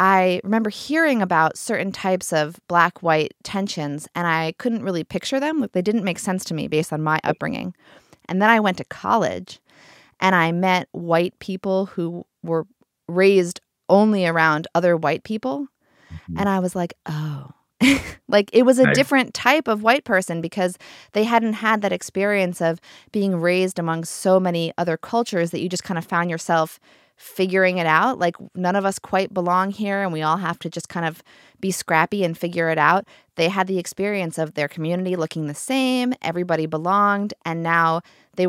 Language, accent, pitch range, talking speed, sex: English, American, 165-200 Hz, 185 wpm, female